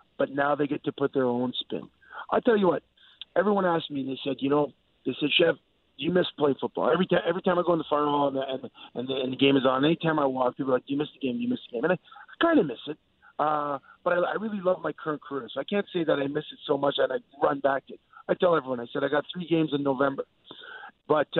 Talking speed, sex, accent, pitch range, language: 290 wpm, male, American, 140-205 Hz, English